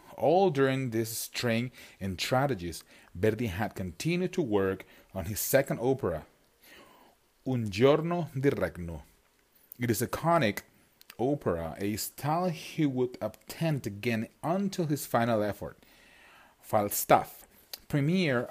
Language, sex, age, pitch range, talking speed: English, male, 30-49, 105-150 Hz, 115 wpm